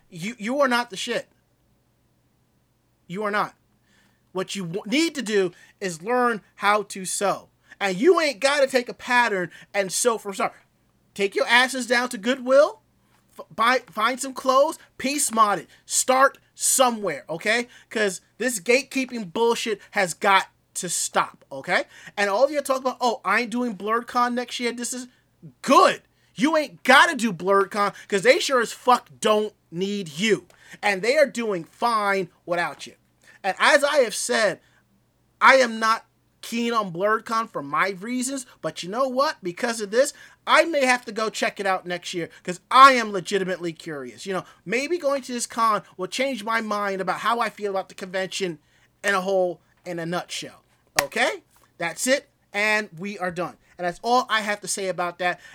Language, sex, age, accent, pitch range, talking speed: English, male, 30-49, American, 190-250 Hz, 185 wpm